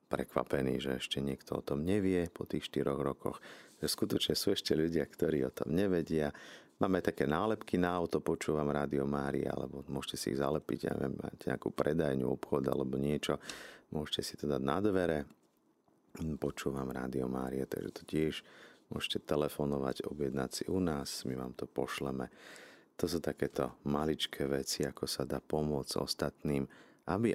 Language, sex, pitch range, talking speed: Slovak, male, 70-80 Hz, 160 wpm